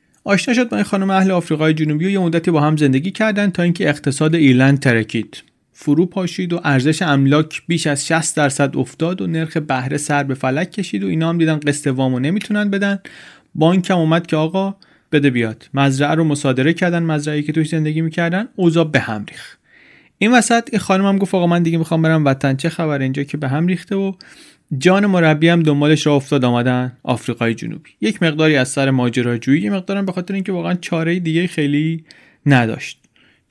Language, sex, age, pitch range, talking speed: Persian, male, 30-49, 135-180 Hz, 190 wpm